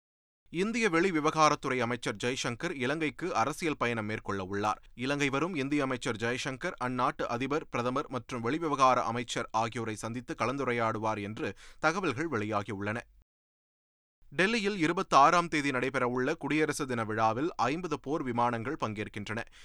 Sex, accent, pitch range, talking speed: male, native, 115-150 Hz, 115 wpm